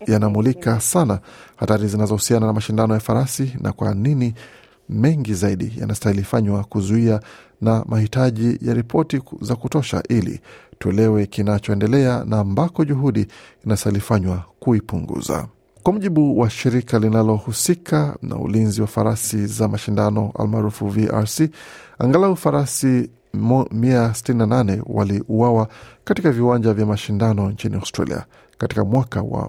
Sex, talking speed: male, 110 wpm